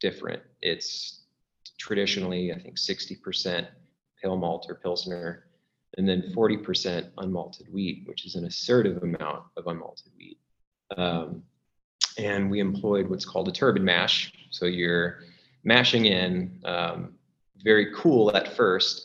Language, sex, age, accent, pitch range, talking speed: English, male, 20-39, American, 90-110 Hz, 130 wpm